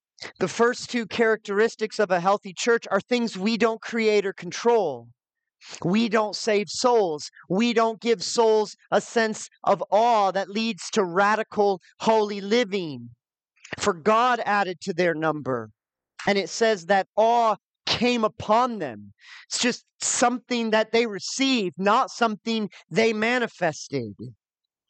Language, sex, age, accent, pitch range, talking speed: English, male, 40-59, American, 160-220 Hz, 135 wpm